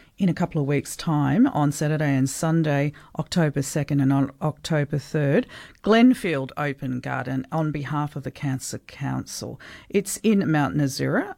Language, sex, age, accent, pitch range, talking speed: English, female, 50-69, Australian, 140-170 Hz, 155 wpm